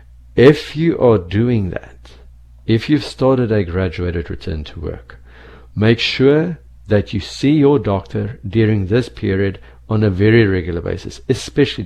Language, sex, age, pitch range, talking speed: English, male, 50-69, 90-115 Hz, 145 wpm